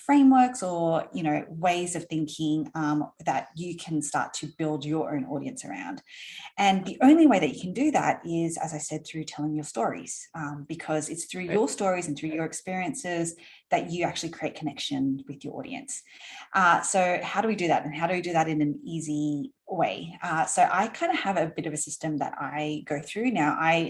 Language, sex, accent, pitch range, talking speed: English, female, Australian, 155-195 Hz, 220 wpm